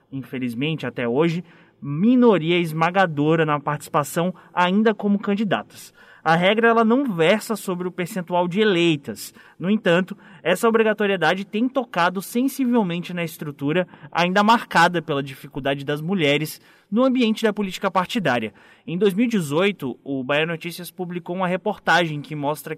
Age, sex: 20-39, male